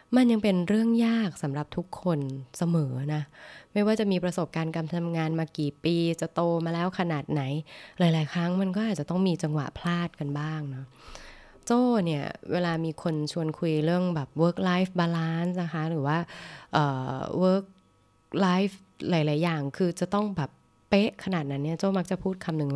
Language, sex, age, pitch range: Thai, female, 20-39, 145-180 Hz